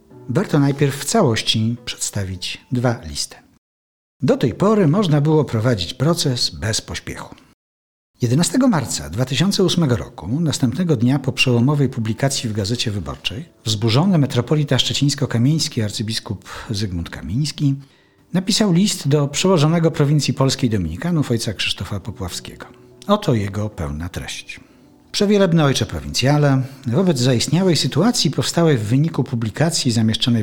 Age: 50-69